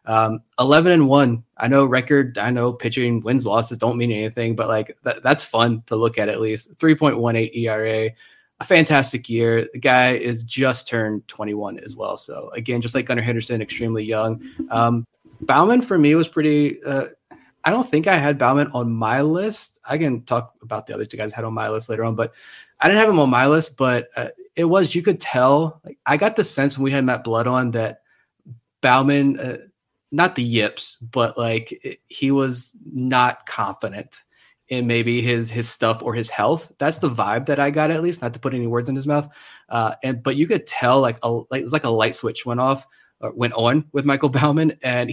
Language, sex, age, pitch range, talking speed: English, male, 20-39, 115-140 Hz, 220 wpm